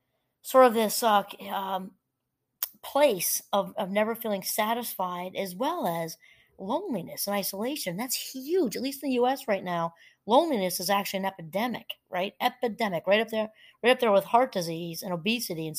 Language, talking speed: English, 170 wpm